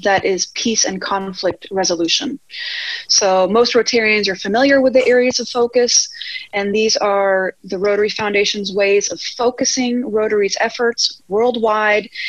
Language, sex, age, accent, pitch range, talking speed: English, female, 30-49, American, 195-245 Hz, 135 wpm